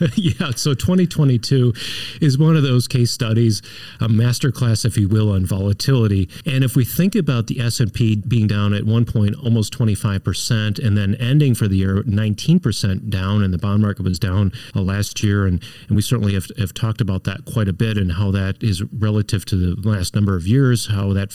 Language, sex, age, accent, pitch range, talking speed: English, male, 40-59, American, 110-145 Hz, 200 wpm